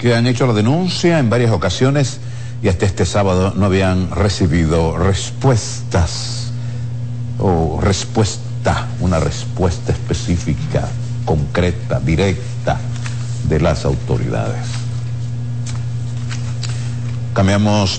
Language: Spanish